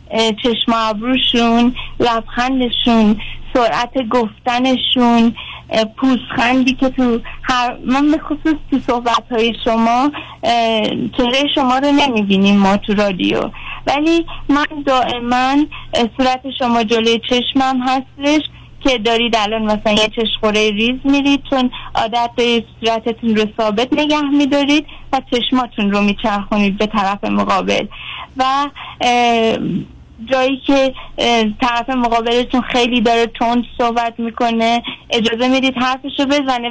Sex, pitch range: female, 230-280 Hz